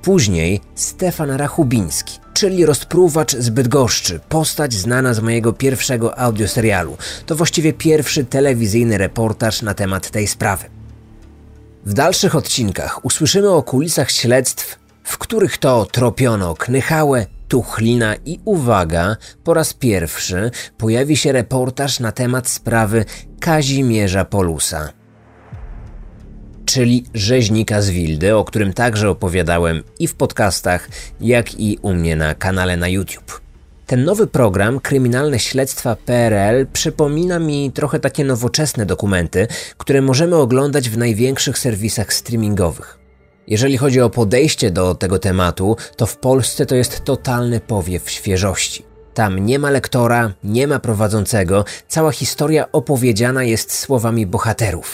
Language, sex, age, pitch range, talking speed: Polish, male, 30-49, 100-135 Hz, 125 wpm